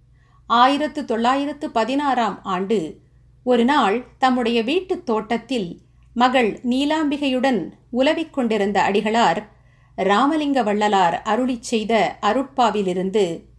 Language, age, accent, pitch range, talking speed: Tamil, 50-69, native, 200-270 Hz, 70 wpm